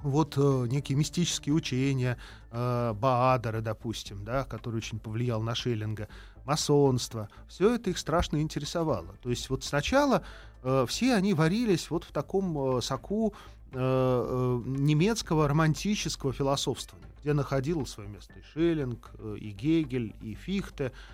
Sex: male